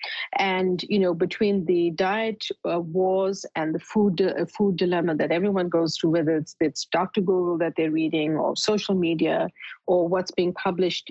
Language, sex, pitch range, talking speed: English, female, 175-215 Hz, 175 wpm